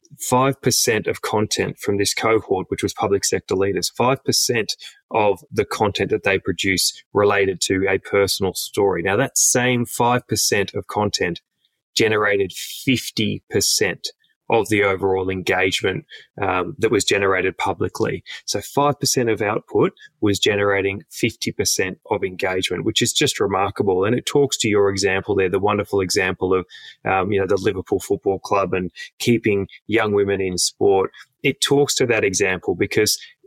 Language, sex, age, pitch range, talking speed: English, male, 20-39, 100-130 Hz, 145 wpm